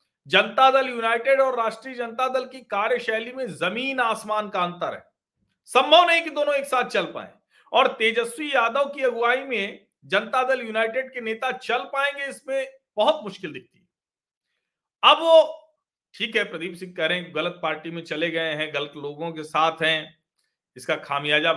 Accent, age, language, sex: native, 40-59, Hindi, male